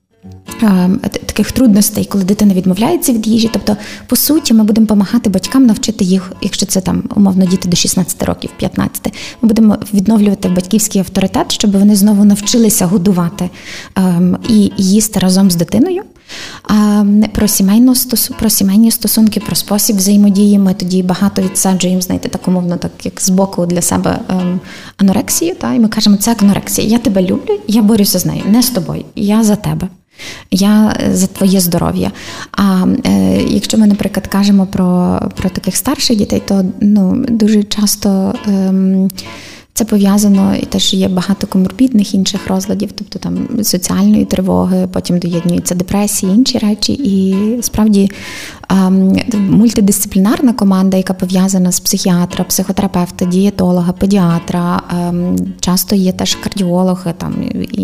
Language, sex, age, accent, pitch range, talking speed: Ukrainian, female, 20-39, native, 185-215 Hz, 140 wpm